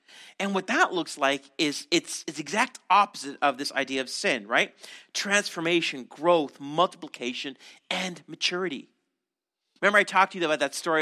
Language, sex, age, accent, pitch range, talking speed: English, male, 40-59, American, 145-200 Hz, 160 wpm